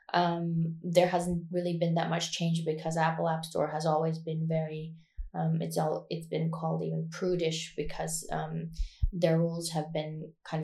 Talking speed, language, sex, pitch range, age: 175 wpm, English, female, 160-170 Hz, 20-39